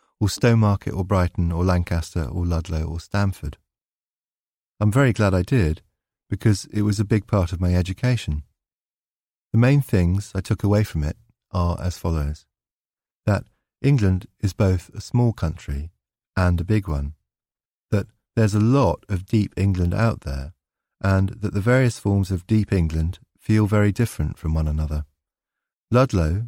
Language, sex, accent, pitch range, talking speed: English, male, British, 85-110 Hz, 160 wpm